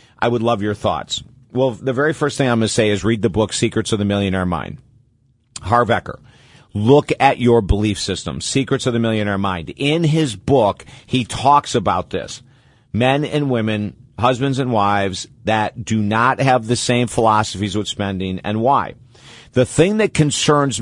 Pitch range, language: 110-130 Hz, English